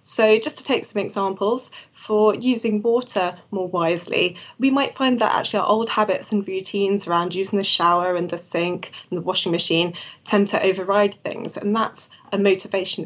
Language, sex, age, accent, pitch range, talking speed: English, female, 20-39, British, 180-215 Hz, 185 wpm